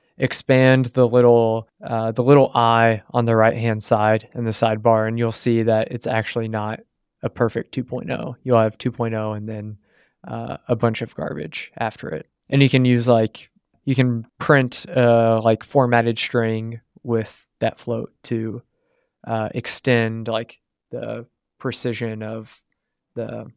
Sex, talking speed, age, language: male, 155 wpm, 20-39, English